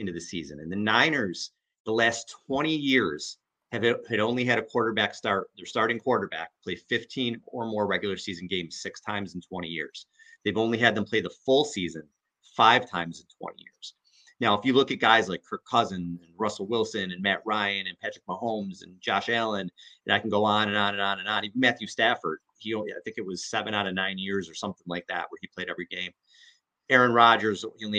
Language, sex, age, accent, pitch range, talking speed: English, male, 30-49, American, 100-125 Hz, 225 wpm